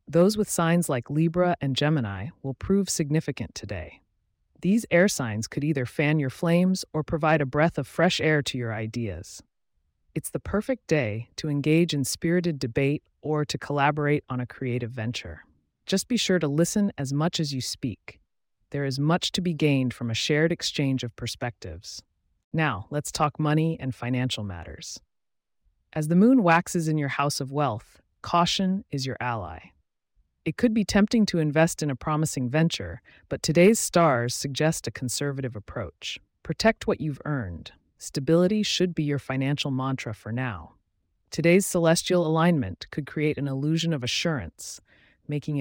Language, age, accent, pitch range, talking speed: English, 30-49, American, 125-165 Hz, 165 wpm